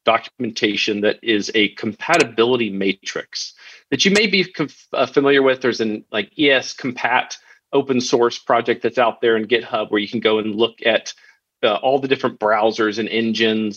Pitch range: 110-130 Hz